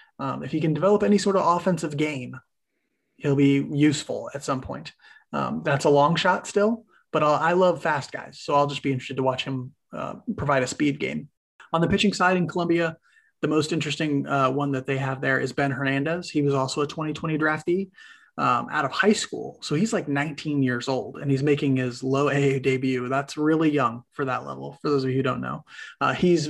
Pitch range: 140-170 Hz